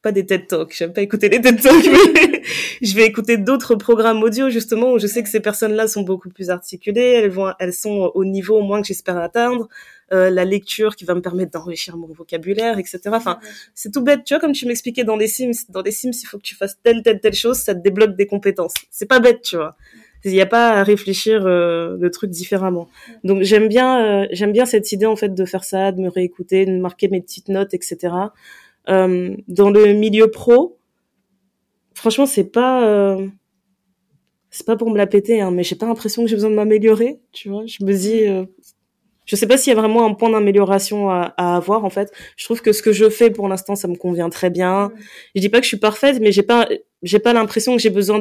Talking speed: 235 wpm